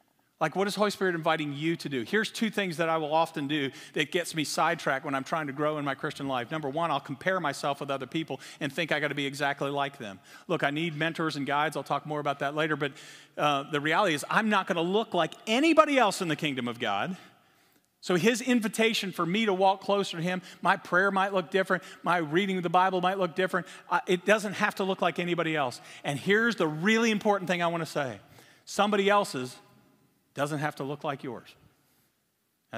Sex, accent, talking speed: male, American, 225 wpm